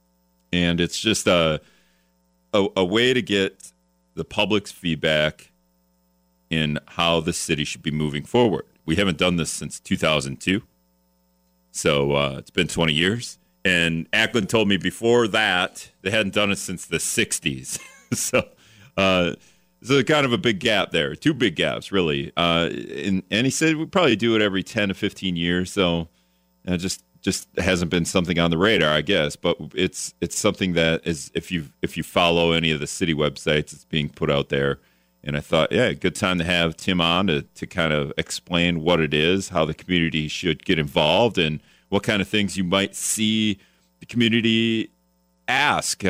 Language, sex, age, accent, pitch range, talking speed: English, male, 40-59, American, 70-95 Hz, 185 wpm